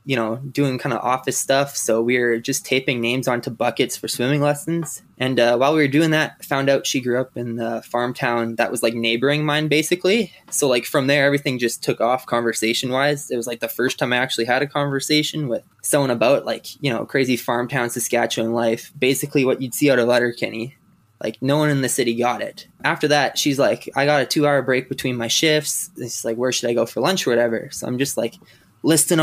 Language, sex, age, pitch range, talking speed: English, male, 20-39, 125-150 Hz, 235 wpm